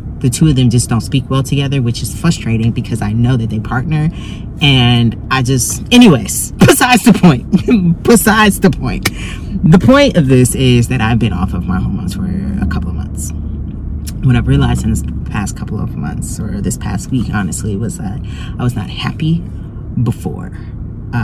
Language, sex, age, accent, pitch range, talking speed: English, female, 30-49, American, 105-130 Hz, 185 wpm